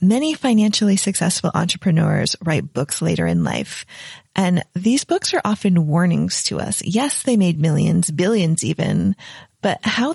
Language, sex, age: English, female, 30-49